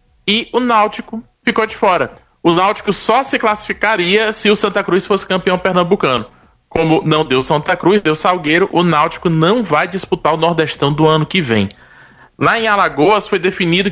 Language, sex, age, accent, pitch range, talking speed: Portuguese, male, 20-39, Brazilian, 150-195 Hz, 175 wpm